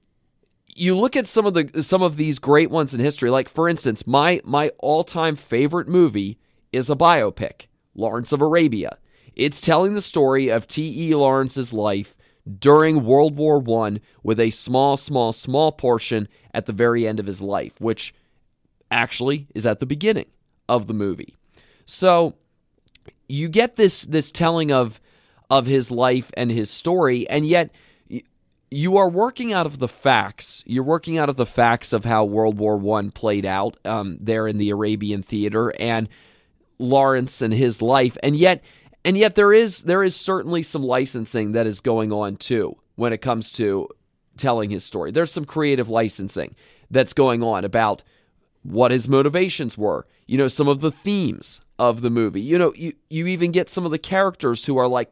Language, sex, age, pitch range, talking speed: English, male, 30-49, 115-160 Hz, 180 wpm